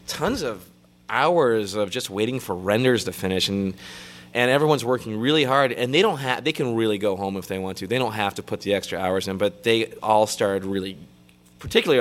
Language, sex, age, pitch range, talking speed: English, male, 20-39, 95-120 Hz, 220 wpm